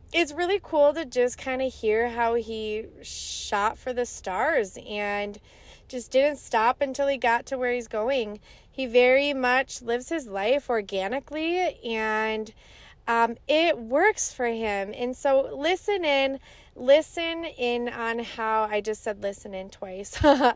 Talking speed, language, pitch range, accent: 150 wpm, English, 220-275 Hz, American